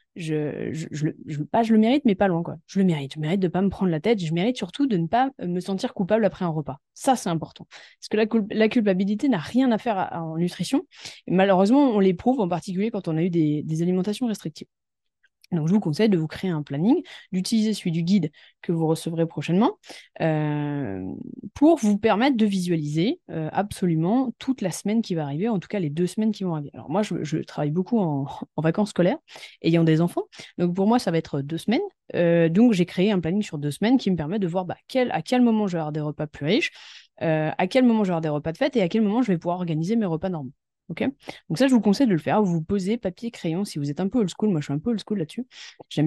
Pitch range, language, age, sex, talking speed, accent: 160-220 Hz, French, 20-39, female, 265 wpm, French